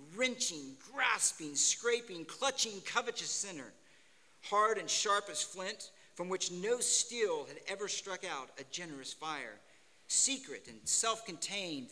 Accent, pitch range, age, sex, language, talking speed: American, 150-220 Hz, 50-69, male, English, 125 wpm